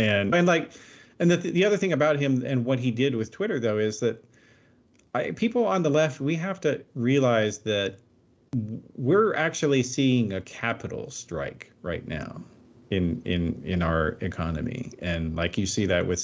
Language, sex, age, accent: English, male, 40-59, American